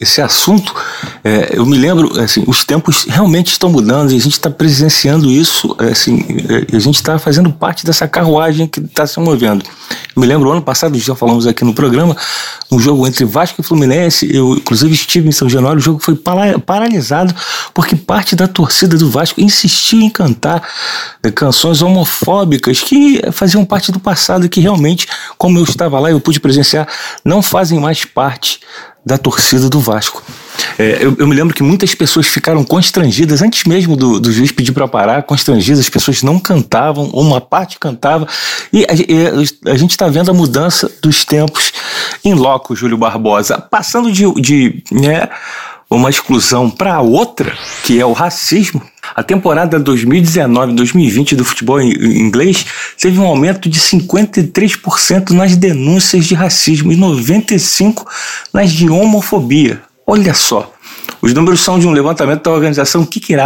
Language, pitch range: Portuguese, 140-180 Hz